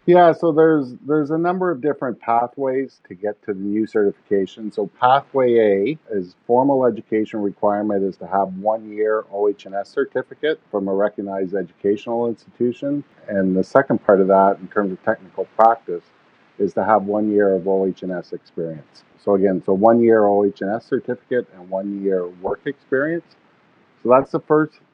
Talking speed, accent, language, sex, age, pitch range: 165 wpm, American, English, male, 50-69, 100-120 Hz